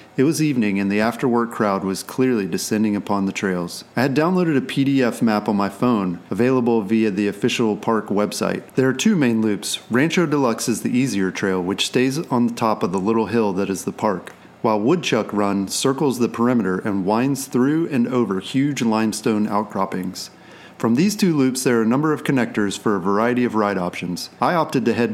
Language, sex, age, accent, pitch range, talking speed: English, male, 40-59, American, 100-130 Hz, 210 wpm